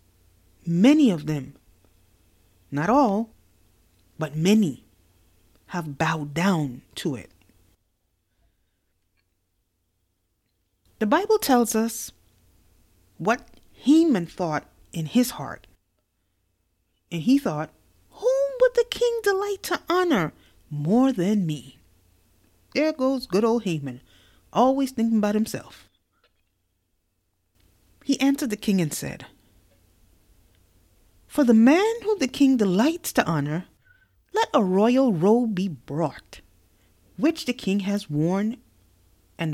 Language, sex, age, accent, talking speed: English, female, 30-49, American, 110 wpm